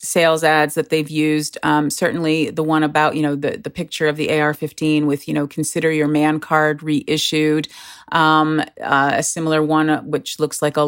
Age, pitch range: 30-49, 150-165 Hz